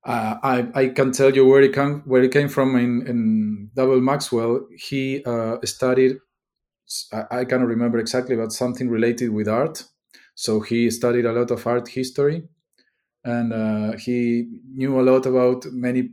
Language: English